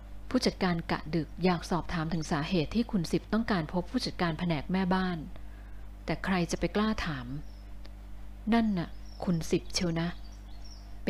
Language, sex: Thai, female